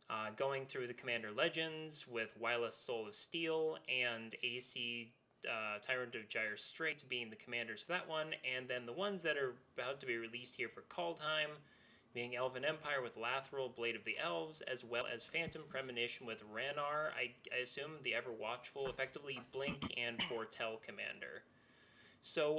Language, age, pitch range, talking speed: English, 20-39, 115-150 Hz, 175 wpm